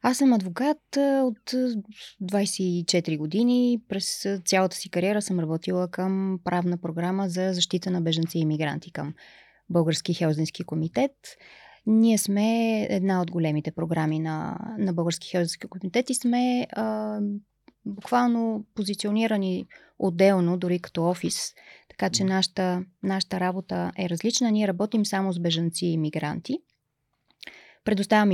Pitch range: 175-215 Hz